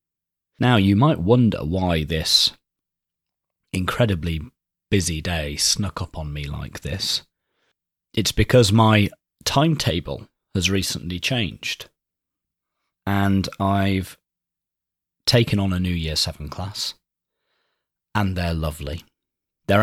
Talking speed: 105 wpm